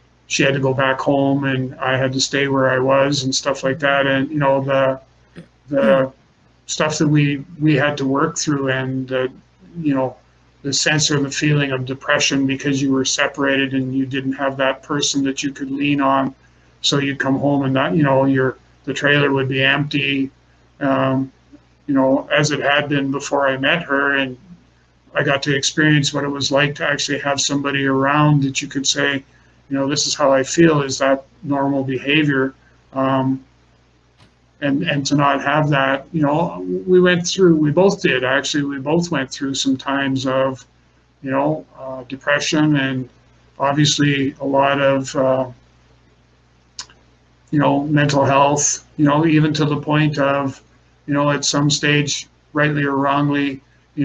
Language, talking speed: English, 180 wpm